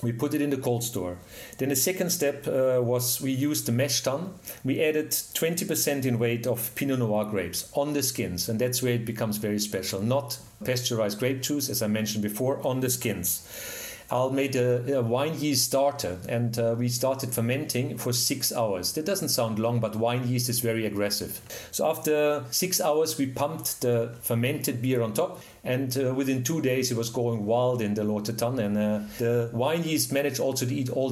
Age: 40-59